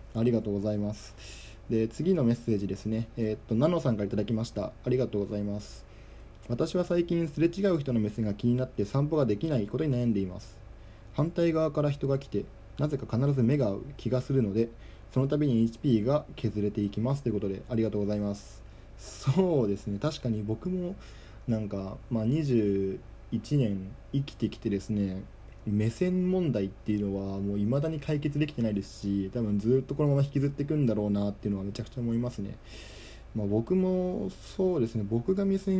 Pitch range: 105-140 Hz